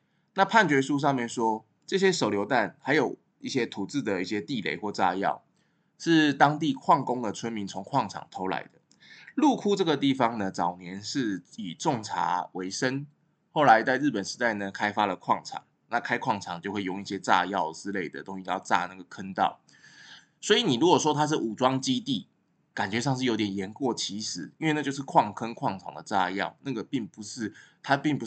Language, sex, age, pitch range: Chinese, male, 20-39, 95-130 Hz